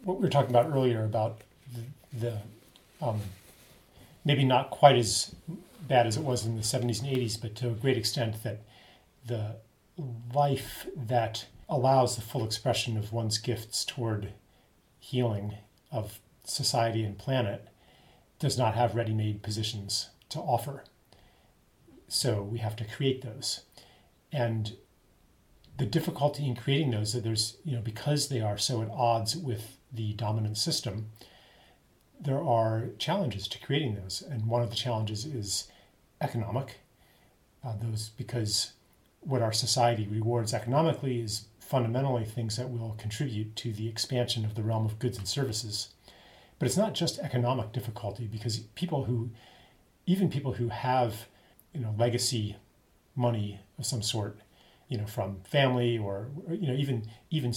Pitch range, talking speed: 110-130 Hz, 150 wpm